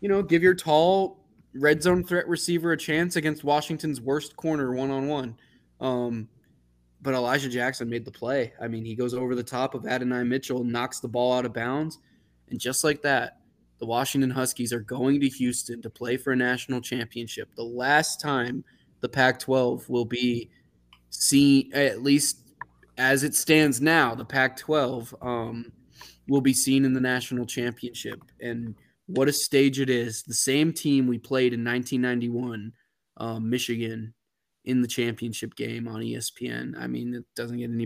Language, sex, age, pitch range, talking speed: English, male, 20-39, 115-135 Hz, 165 wpm